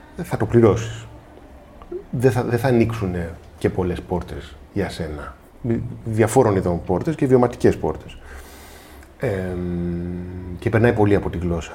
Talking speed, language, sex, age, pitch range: 135 wpm, Greek, male, 30-49, 85-120 Hz